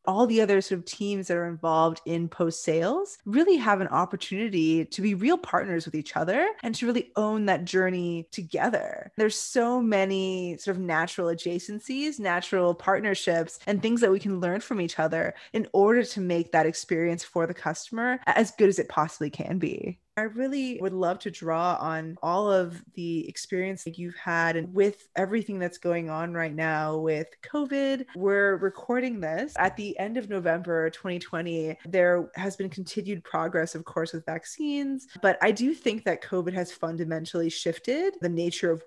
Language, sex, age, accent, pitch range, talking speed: English, female, 20-39, American, 170-205 Hz, 180 wpm